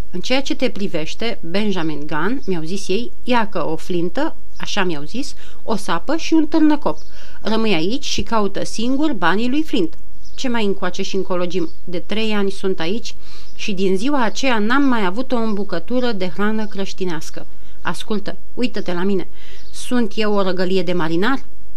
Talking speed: 170 wpm